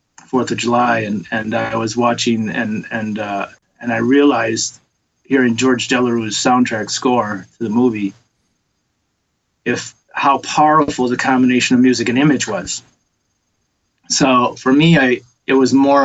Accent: American